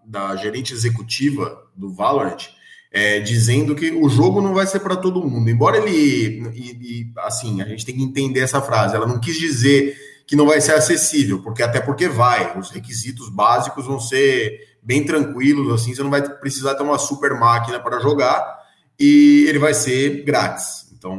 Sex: male